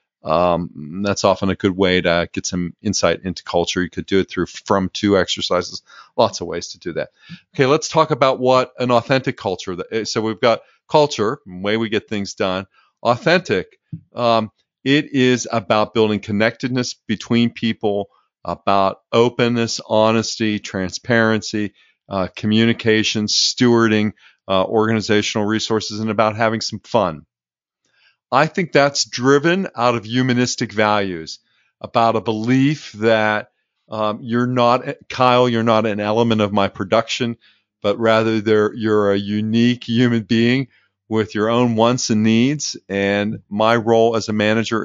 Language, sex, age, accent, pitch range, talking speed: English, male, 40-59, American, 100-120 Hz, 145 wpm